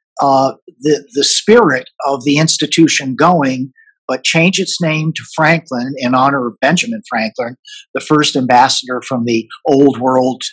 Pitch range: 130-160 Hz